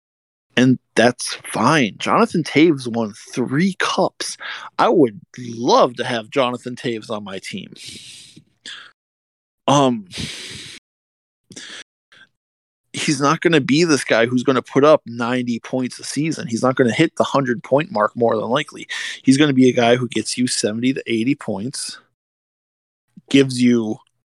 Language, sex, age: English, male, 20-39